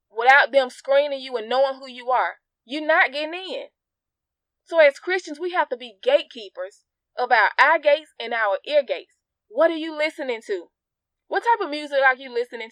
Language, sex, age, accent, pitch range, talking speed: English, female, 20-39, American, 285-375 Hz, 195 wpm